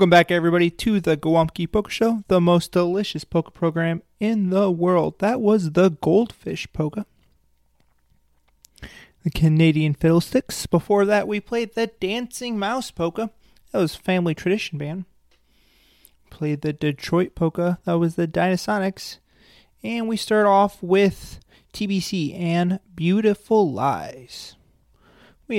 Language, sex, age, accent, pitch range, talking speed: English, male, 30-49, American, 155-200 Hz, 130 wpm